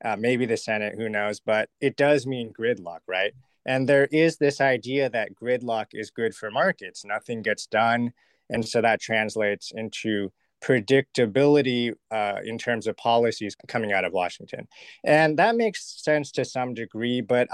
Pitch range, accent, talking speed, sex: 110-140 Hz, American, 170 wpm, male